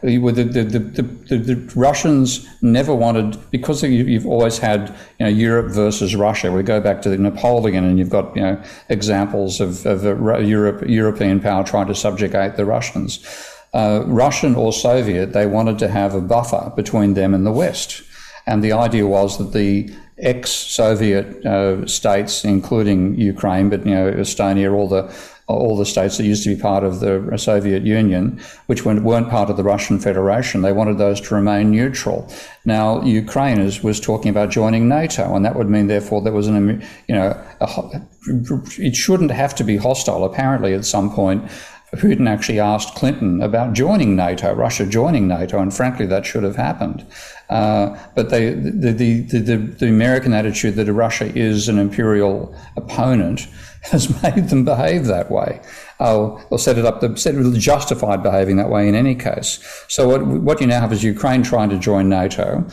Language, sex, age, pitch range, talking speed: English, male, 50-69, 100-115 Hz, 175 wpm